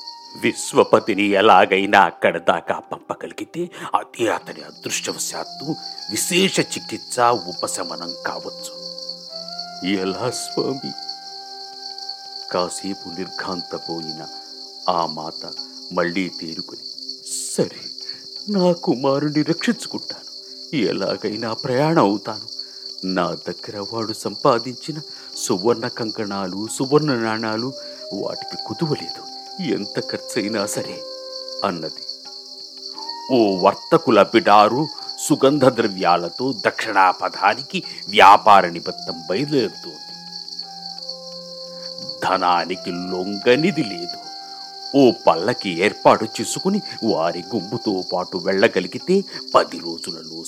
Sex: male